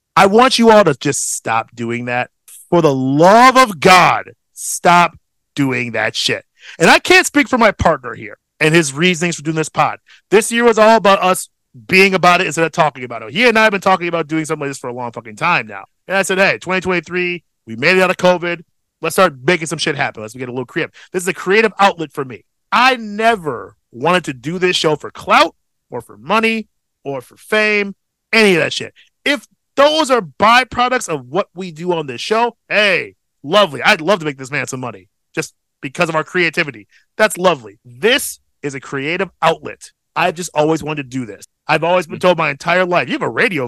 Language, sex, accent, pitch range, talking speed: English, male, American, 145-215 Hz, 225 wpm